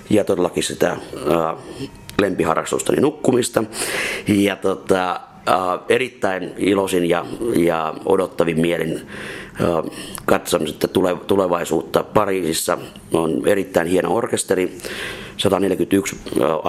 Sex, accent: male, native